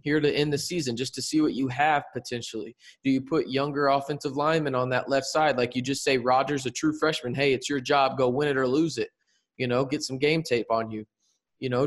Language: English